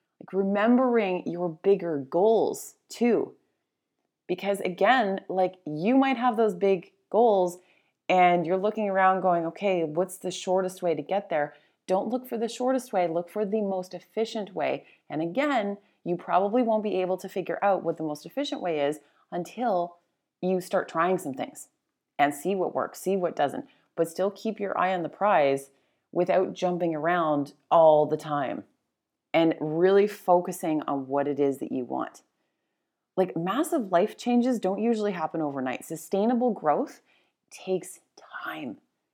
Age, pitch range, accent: 30-49, 165-220 Hz, American